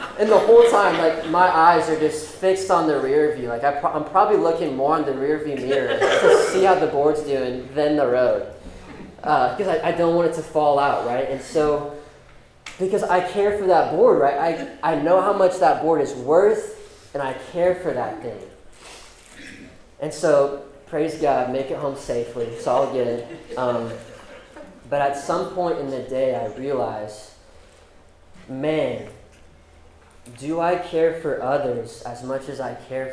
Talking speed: 180 wpm